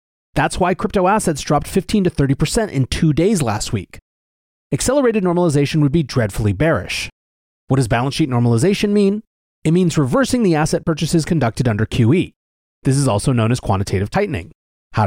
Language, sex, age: English, male, 30-49